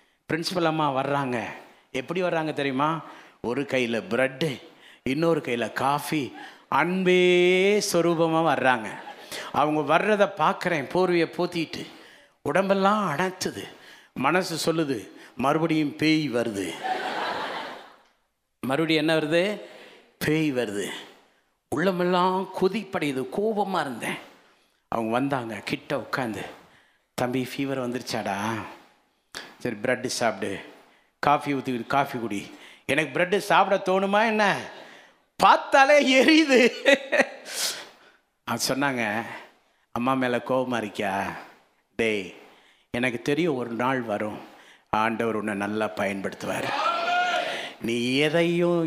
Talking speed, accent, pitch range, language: 90 wpm, native, 125-180 Hz, Tamil